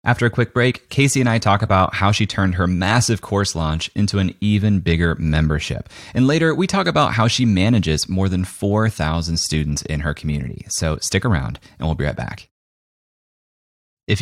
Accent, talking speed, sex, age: American, 190 wpm, male, 30-49